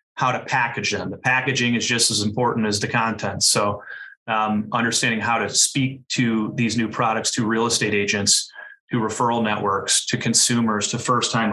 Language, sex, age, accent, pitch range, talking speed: English, male, 30-49, American, 110-135 Hz, 175 wpm